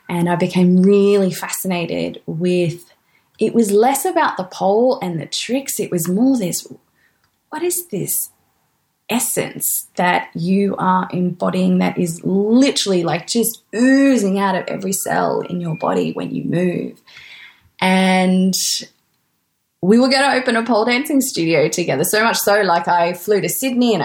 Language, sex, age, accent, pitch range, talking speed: English, female, 20-39, Australian, 175-220 Hz, 155 wpm